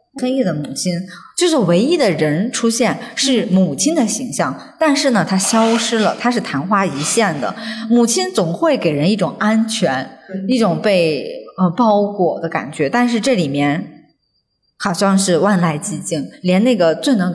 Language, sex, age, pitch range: Chinese, female, 20-39, 170-235 Hz